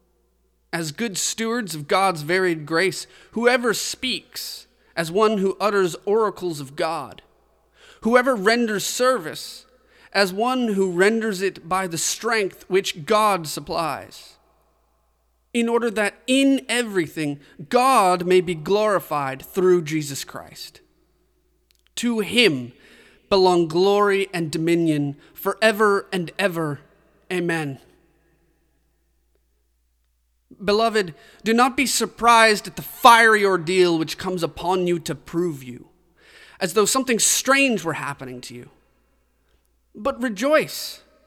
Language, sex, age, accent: English, male, 30-49, American